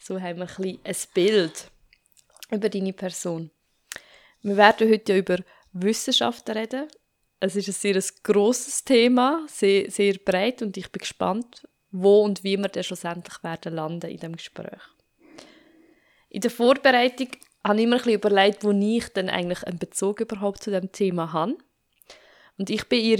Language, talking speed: German, 170 wpm